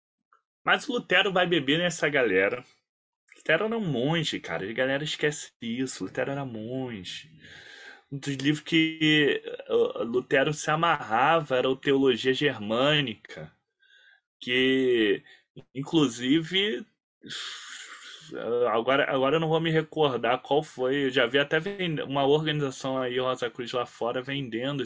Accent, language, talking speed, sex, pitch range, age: Brazilian, Portuguese, 130 wpm, male, 130-210 Hz, 20-39